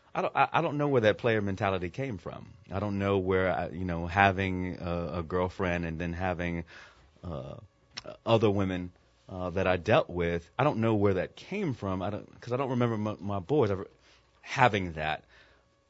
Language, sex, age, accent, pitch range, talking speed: English, male, 30-49, American, 90-110 Hz, 190 wpm